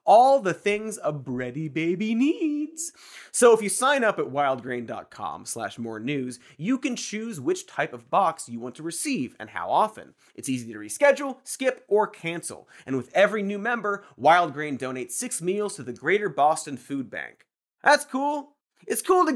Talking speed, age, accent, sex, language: 180 wpm, 30-49, American, male, English